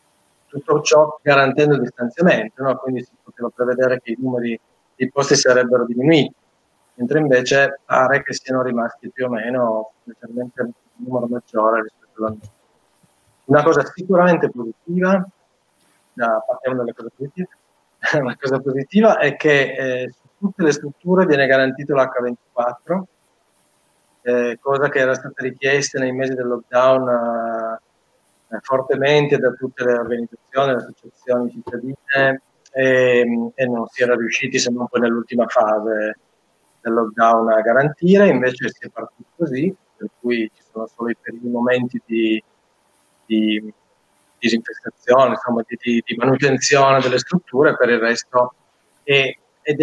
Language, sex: Italian, male